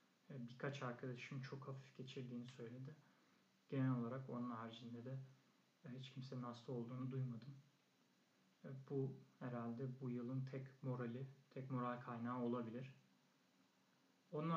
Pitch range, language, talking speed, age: 125-140 Hz, Turkish, 110 wpm, 40-59